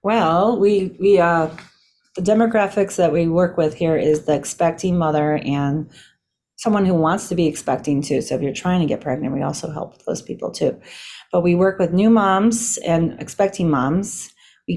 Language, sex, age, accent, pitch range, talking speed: English, female, 30-49, American, 150-185 Hz, 185 wpm